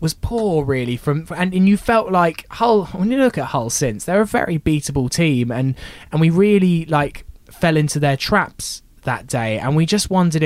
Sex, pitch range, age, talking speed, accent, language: male, 125-170 Hz, 10-29, 205 wpm, British, English